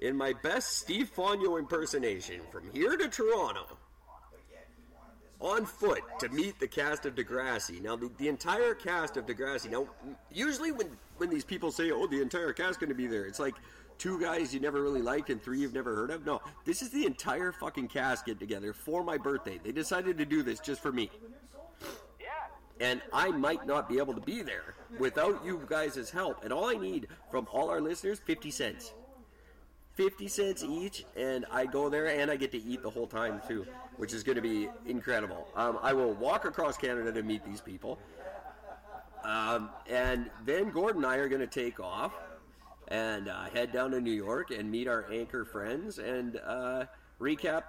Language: English